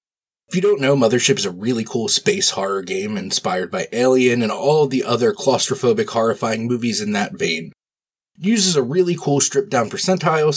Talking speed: 185 wpm